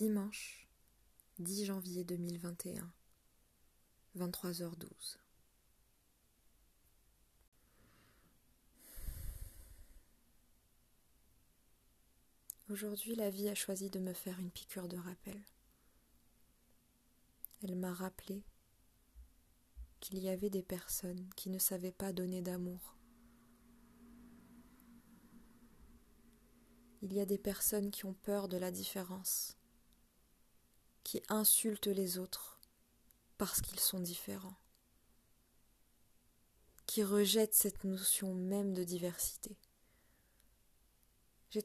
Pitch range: 120-205 Hz